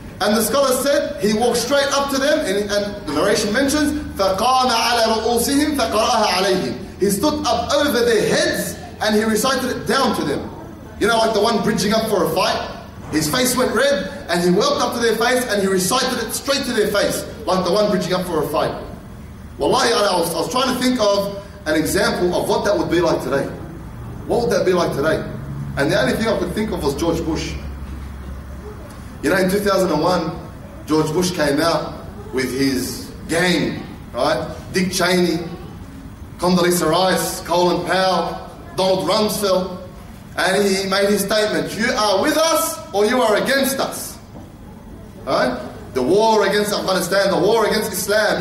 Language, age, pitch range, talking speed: English, 30-49, 175-250 Hz, 180 wpm